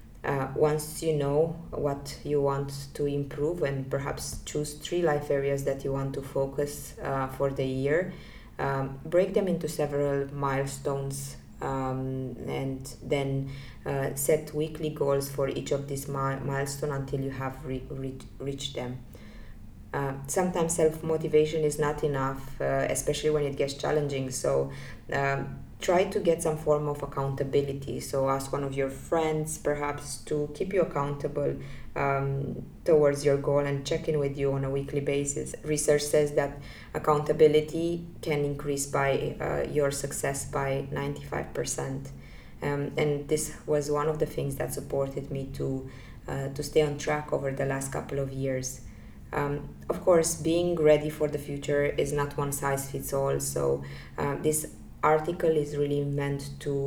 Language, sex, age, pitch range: English, female, 20-39, 135-150 Hz